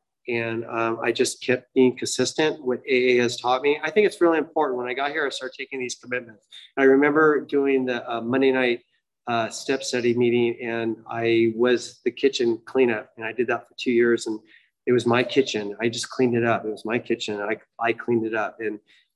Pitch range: 115-135 Hz